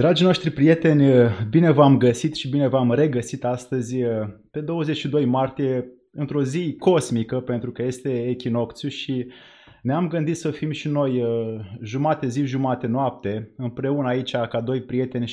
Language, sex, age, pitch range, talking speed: Romanian, male, 20-39, 125-160 Hz, 150 wpm